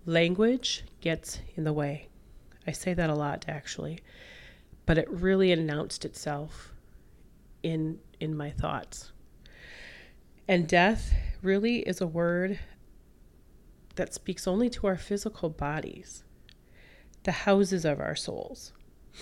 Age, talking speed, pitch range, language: 30-49, 120 wpm, 150-185 Hz, English